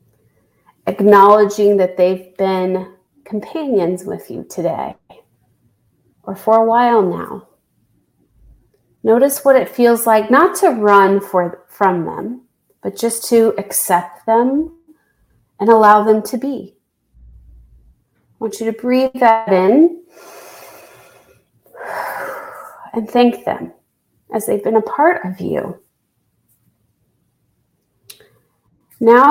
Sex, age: female, 30-49